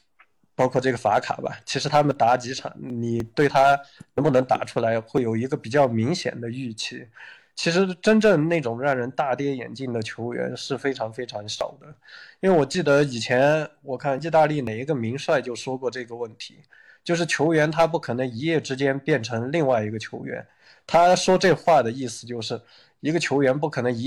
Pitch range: 120-150 Hz